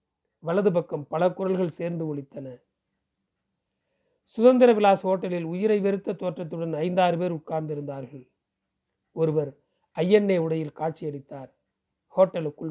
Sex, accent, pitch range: male, native, 160-205 Hz